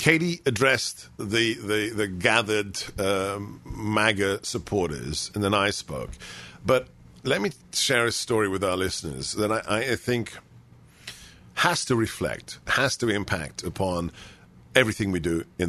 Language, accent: English, British